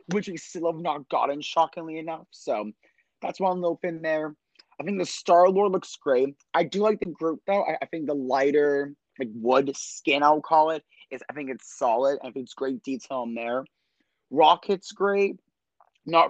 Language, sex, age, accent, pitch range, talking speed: English, male, 20-39, American, 135-190 Hz, 195 wpm